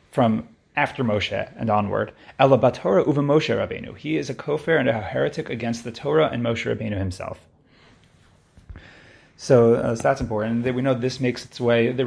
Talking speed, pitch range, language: 160 wpm, 115-135 Hz, English